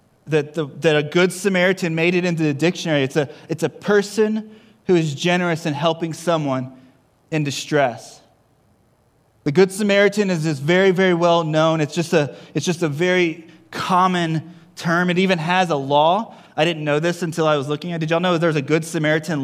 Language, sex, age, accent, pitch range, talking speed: English, male, 20-39, American, 150-180 Hz, 200 wpm